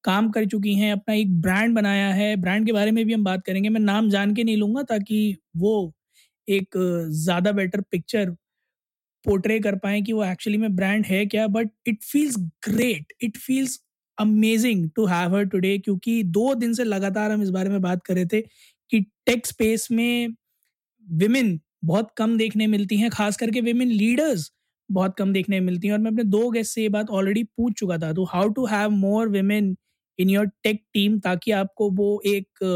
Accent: native